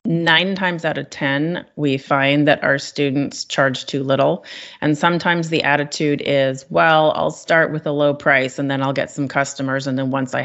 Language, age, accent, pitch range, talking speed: English, 30-49, American, 135-150 Hz, 200 wpm